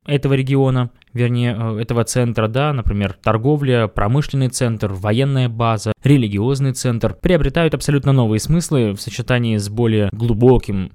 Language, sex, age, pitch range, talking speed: Russian, male, 20-39, 110-145 Hz, 125 wpm